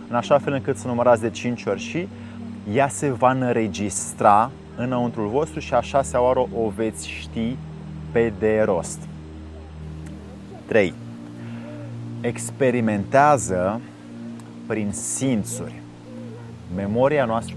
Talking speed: 110 wpm